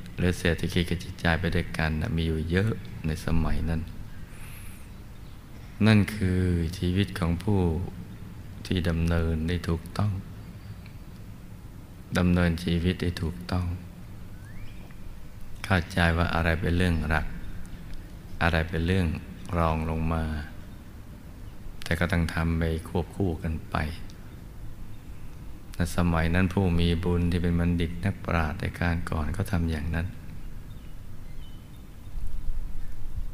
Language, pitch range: Thai, 85-95 Hz